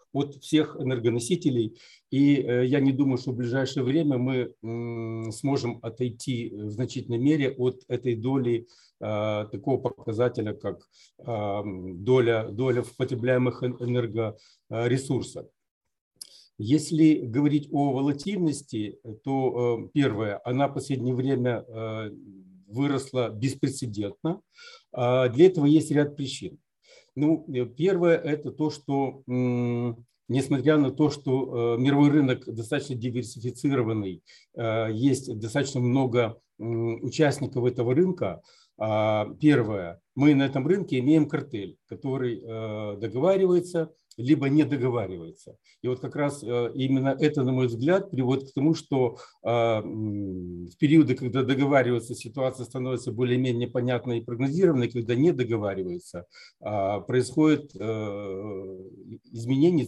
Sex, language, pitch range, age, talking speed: male, Ukrainian, 115-140 Hz, 50-69, 105 wpm